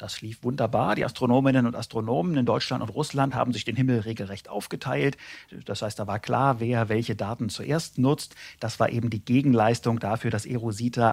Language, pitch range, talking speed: German, 110-125 Hz, 190 wpm